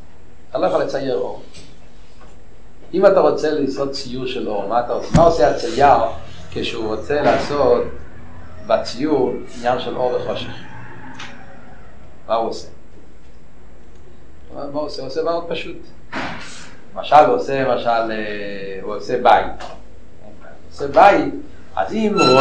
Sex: male